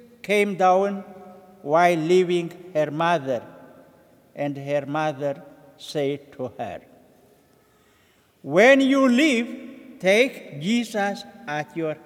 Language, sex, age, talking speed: English, male, 60-79, 95 wpm